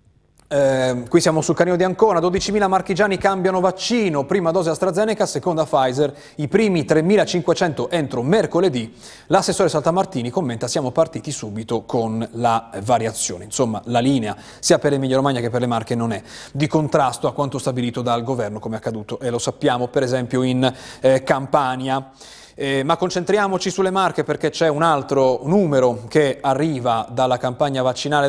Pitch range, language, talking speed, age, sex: 125-170 Hz, Italian, 160 wpm, 30-49, male